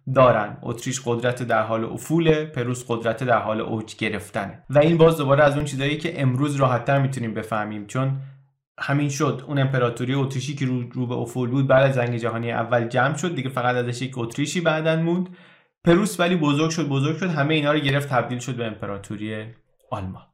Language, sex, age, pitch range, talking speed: Persian, male, 20-39, 115-150 Hz, 195 wpm